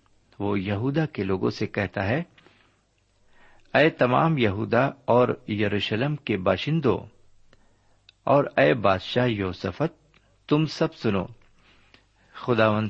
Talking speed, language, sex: 100 wpm, Urdu, male